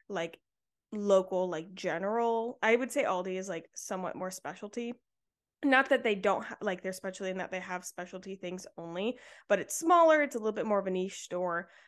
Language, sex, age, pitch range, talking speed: English, female, 20-39, 175-220 Hz, 200 wpm